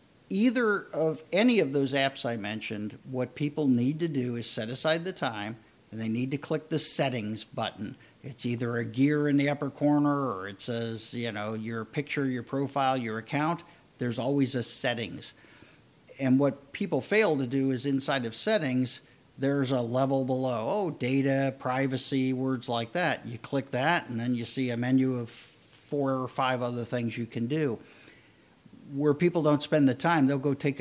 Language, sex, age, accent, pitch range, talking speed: English, male, 50-69, American, 120-145 Hz, 185 wpm